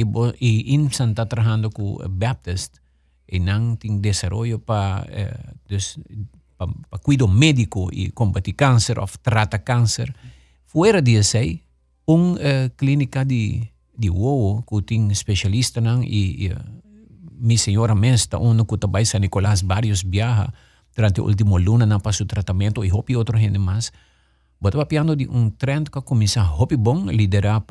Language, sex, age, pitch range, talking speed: English, male, 50-69, 100-120 Hz, 165 wpm